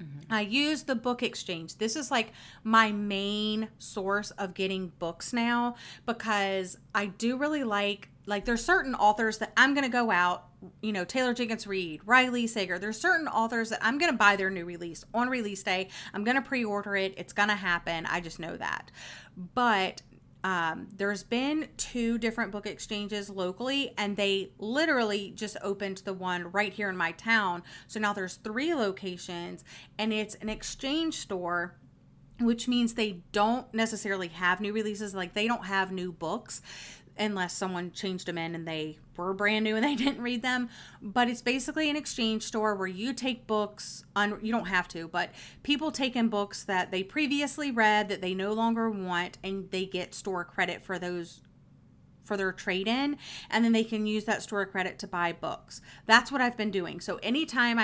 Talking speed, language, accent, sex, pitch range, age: 190 wpm, English, American, female, 185-235 Hz, 30-49